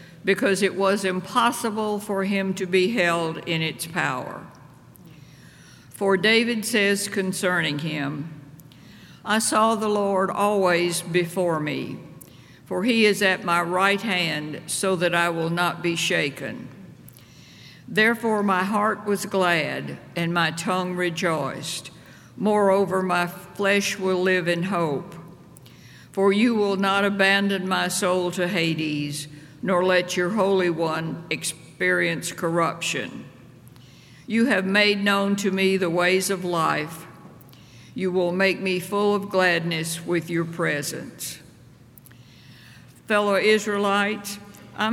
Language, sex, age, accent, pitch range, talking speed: English, female, 60-79, American, 170-200 Hz, 125 wpm